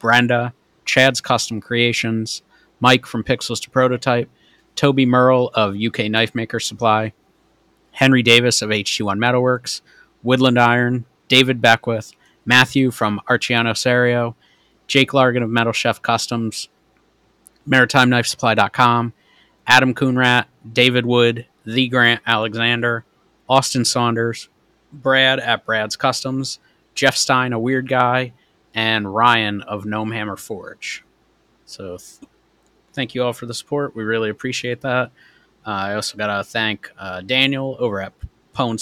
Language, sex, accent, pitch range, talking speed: English, male, American, 110-125 Hz, 130 wpm